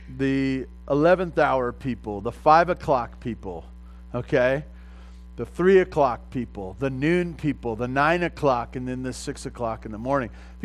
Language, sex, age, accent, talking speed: English, male, 40-59, American, 160 wpm